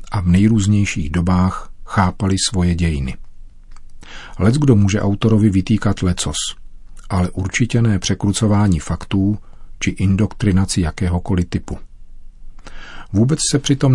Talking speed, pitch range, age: 110 wpm, 90-105 Hz, 40-59